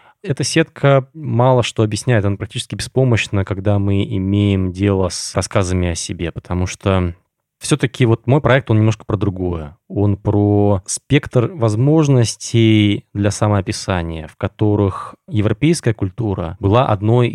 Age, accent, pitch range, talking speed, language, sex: 20-39, native, 100-125 Hz, 130 wpm, Russian, male